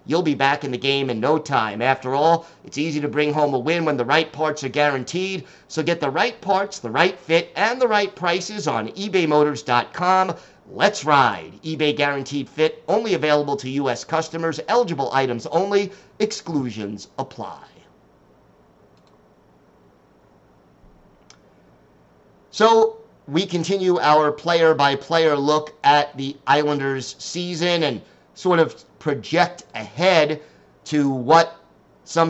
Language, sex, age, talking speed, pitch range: English, male, 50-69, 130 wpm, 135-170 Hz